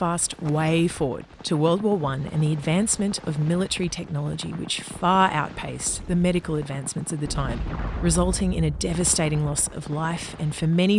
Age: 30-49